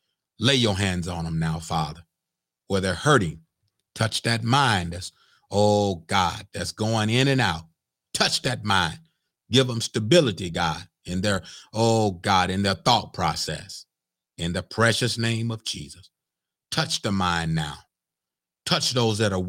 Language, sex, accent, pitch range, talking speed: English, male, American, 85-125 Hz, 155 wpm